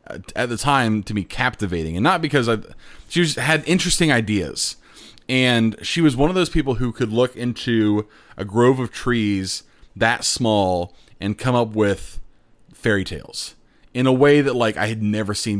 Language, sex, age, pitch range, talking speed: English, male, 30-49, 100-125 Hz, 175 wpm